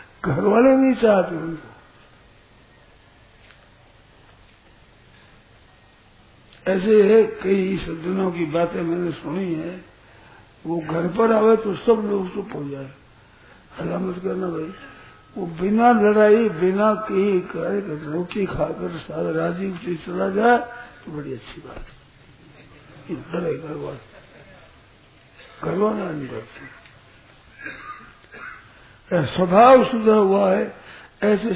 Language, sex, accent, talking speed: Hindi, male, native, 105 wpm